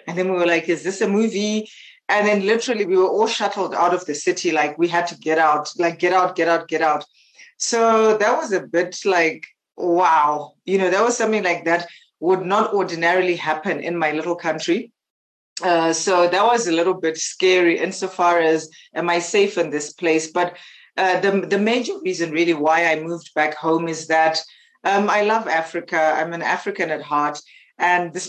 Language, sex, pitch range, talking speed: English, female, 165-205 Hz, 205 wpm